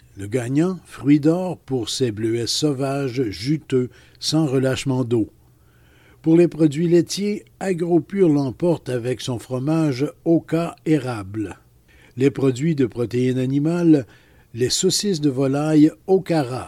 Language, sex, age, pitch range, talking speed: French, male, 60-79, 125-155 Hz, 120 wpm